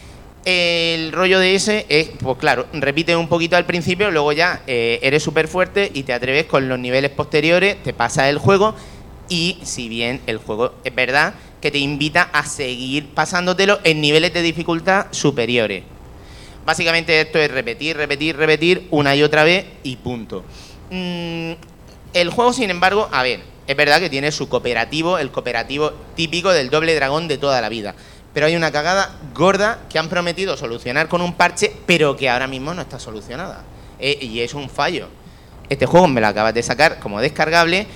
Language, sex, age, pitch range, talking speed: Spanish, male, 30-49, 130-175 Hz, 180 wpm